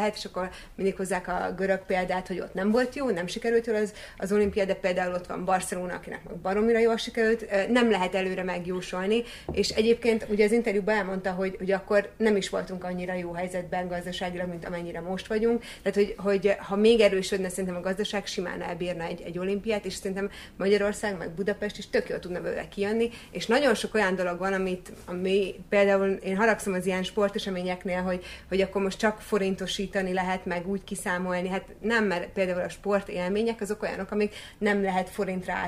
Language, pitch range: Hungarian, 185-210 Hz